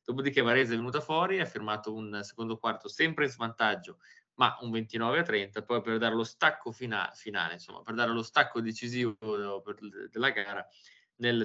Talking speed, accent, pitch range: 180 wpm, native, 110-130 Hz